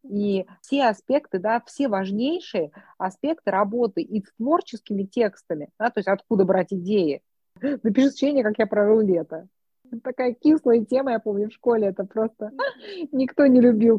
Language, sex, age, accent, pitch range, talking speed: Russian, female, 30-49, native, 195-255 Hz, 160 wpm